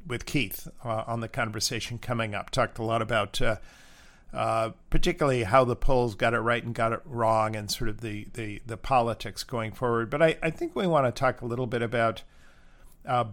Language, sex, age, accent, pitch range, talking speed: English, male, 50-69, American, 115-135 Hz, 210 wpm